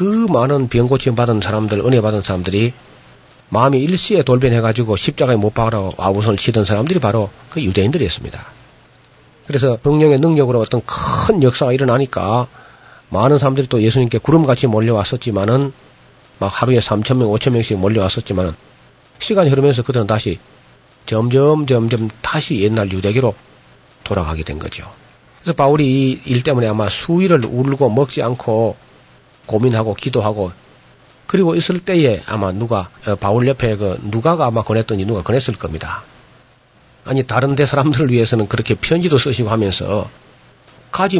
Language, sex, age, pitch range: Korean, male, 40-59, 110-135 Hz